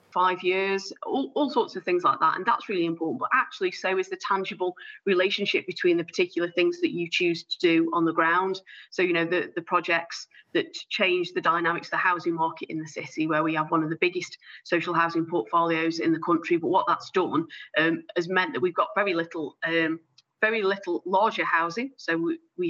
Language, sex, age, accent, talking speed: English, female, 30-49, British, 215 wpm